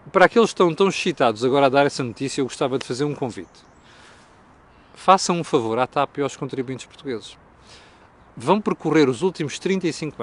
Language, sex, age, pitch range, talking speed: Portuguese, male, 40-59, 130-185 Hz, 180 wpm